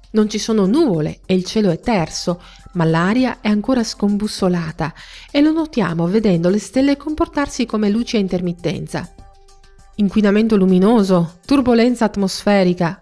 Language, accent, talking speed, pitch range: Italian, native, 135 wpm, 175-225 Hz